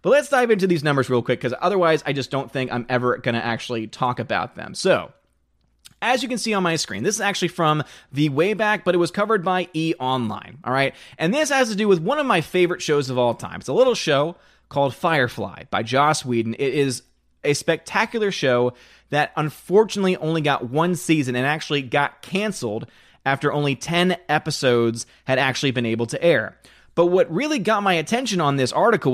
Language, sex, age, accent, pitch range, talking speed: English, male, 30-49, American, 135-210 Hz, 210 wpm